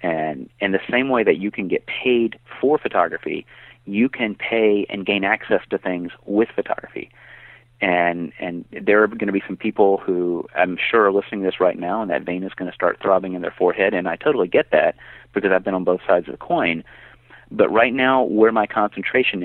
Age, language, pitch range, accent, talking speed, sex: 30-49, English, 90-110 Hz, American, 220 wpm, male